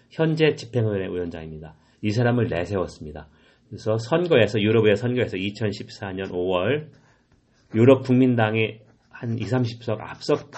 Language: Korean